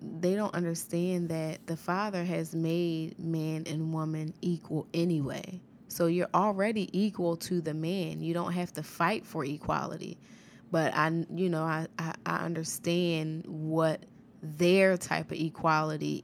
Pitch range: 160-185 Hz